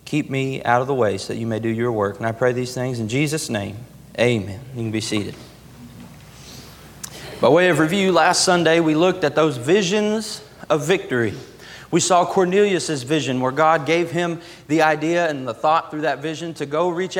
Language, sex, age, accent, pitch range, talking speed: English, male, 30-49, American, 155-185 Hz, 200 wpm